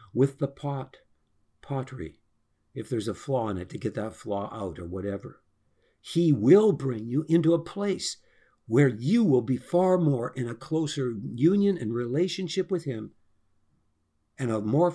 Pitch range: 110-160 Hz